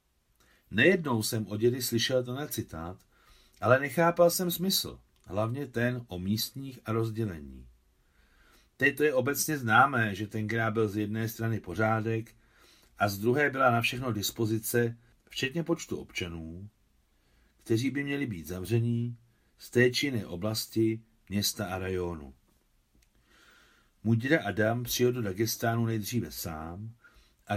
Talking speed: 130 wpm